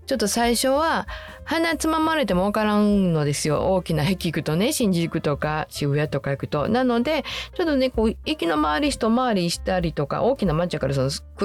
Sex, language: female, Japanese